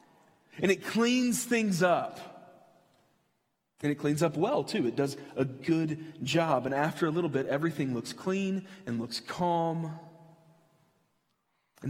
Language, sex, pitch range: English, male, 125-170 Hz